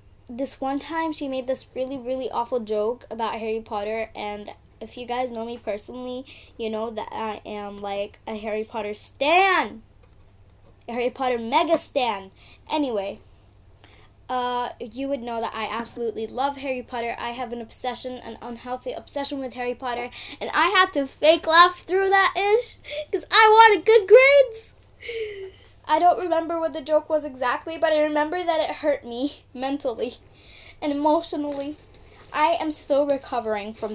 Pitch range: 210-285 Hz